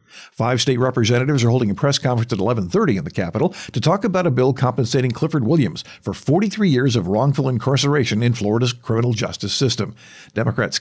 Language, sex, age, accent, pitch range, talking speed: English, male, 50-69, American, 110-145 Hz, 185 wpm